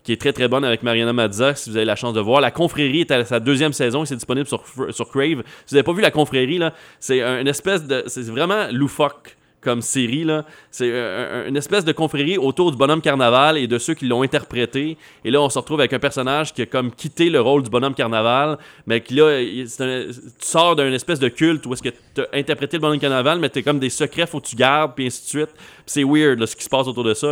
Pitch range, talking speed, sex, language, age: 115-145 Hz, 265 wpm, male, French, 30-49